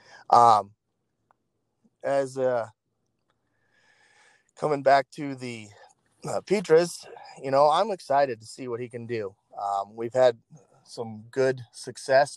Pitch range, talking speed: 115-140 Hz, 120 wpm